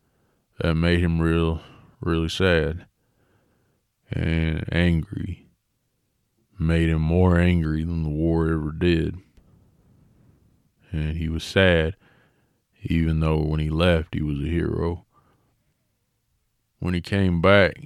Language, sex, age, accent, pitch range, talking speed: English, male, 20-39, American, 80-95 Hz, 115 wpm